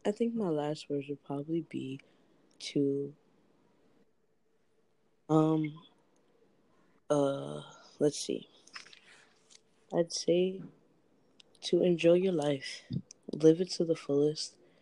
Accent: American